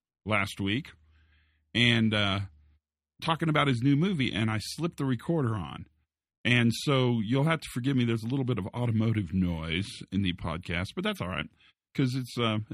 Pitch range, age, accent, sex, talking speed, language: 100-130 Hz, 40-59, American, male, 185 wpm, English